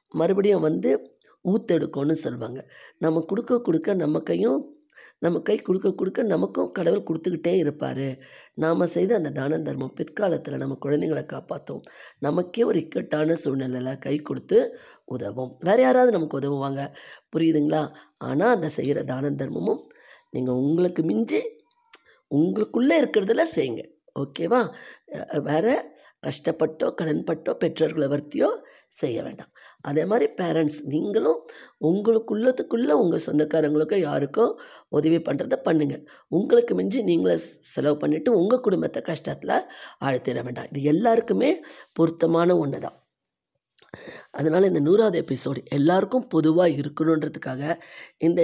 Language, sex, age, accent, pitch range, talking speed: Tamil, female, 20-39, native, 145-210 Hz, 110 wpm